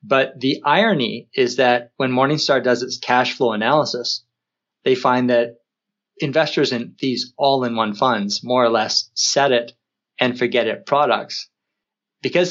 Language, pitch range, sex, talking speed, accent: English, 120-140 Hz, male, 145 wpm, American